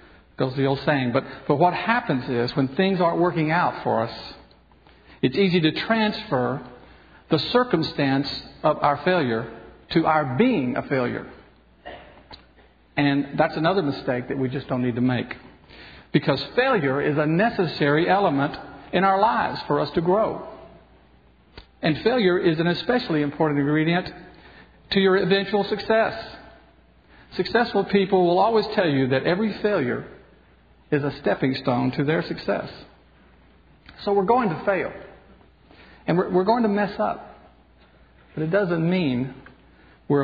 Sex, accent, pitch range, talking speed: male, American, 135-190 Hz, 145 wpm